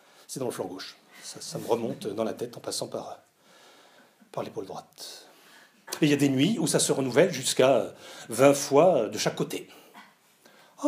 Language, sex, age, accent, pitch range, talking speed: French, male, 40-59, French, 135-205 Hz, 195 wpm